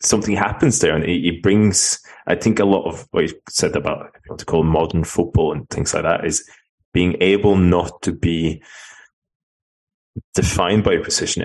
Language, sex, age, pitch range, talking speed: English, male, 30-49, 80-100 Hz, 175 wpm